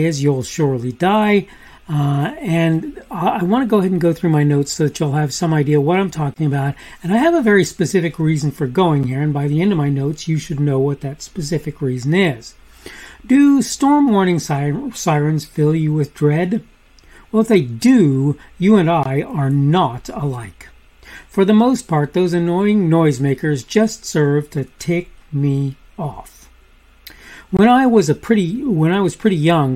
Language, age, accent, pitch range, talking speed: English, 40-59, American, 145-215 Hz, 185 wpm